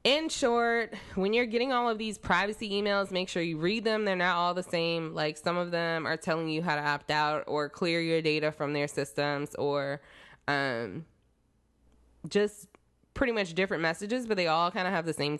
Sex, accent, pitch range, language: female, American, 155-215 Hz, English